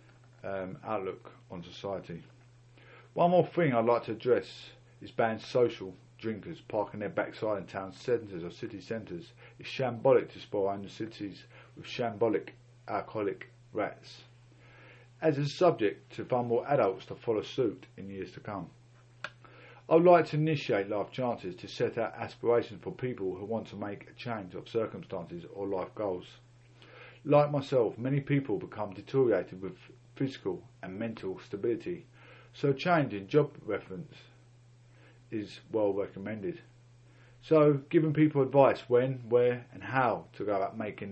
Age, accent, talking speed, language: 50-69, British, 150 wpm, English